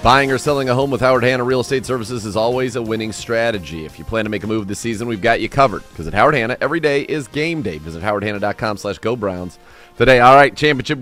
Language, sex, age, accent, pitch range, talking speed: English, male, 30-49, American, 90-115 Hz, 250 wpm